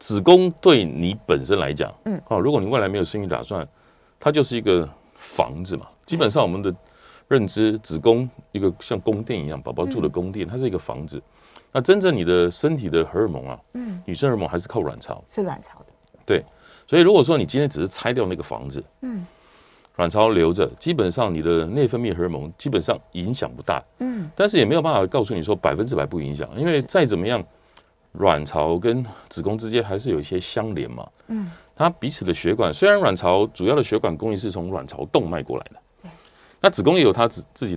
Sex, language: male, Chinese